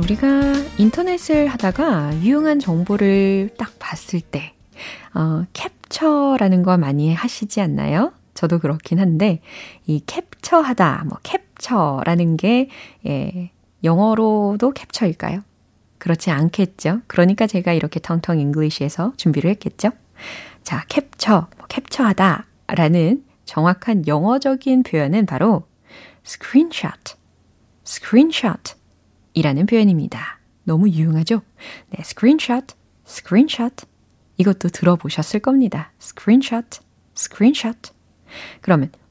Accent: native